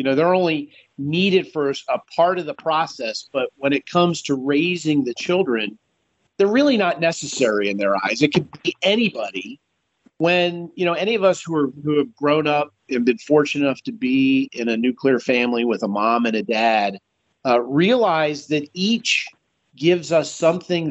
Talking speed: 185 wpm